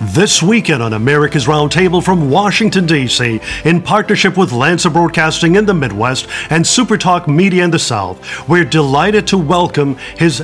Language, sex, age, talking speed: English, male, 50-69, 155 wpm